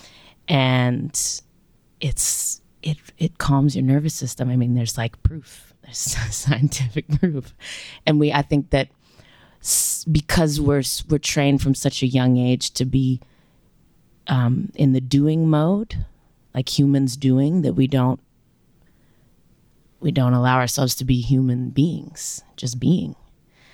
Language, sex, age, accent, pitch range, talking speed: English, female, 20-39, American, 125-145 Hz, 135 wpm